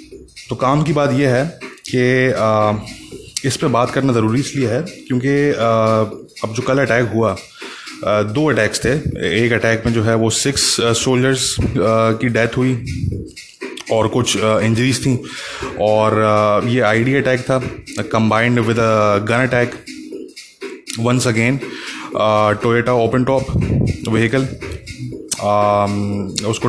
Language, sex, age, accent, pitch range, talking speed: English, male, 20-39, Indian, 105-125 Hz, 110 wpm